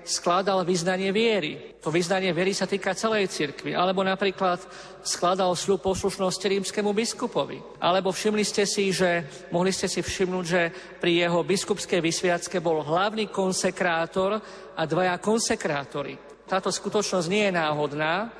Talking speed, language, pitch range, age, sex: 135 wpm, Slovak, 175-205 Hz, 50-69, male